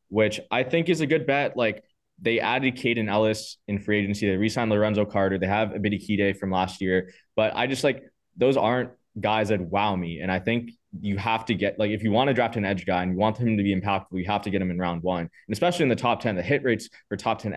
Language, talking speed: English, 275 wpm